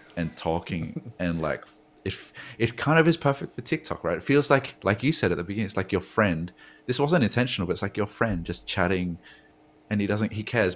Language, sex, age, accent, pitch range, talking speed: English, male, 20-39, Australian, 80-105 Hz, 235 wpm